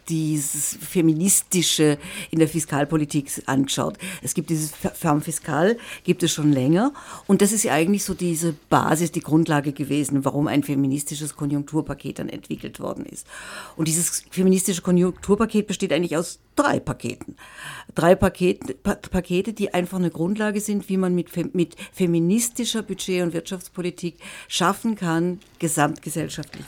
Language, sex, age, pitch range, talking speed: German, female, 50-69, 150-190 Hz, 135 wpm